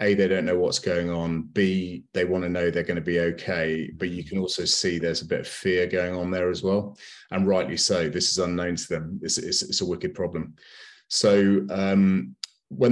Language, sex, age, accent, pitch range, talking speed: English, male, 30-49, British, 85-100 Hz, 230 wpm